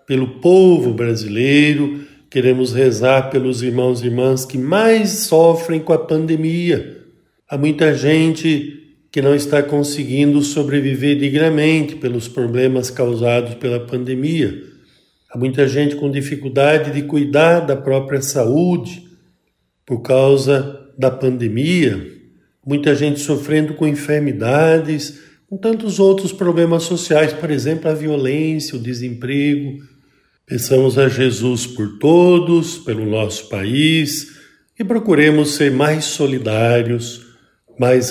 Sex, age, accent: male, 50-69, Brazilian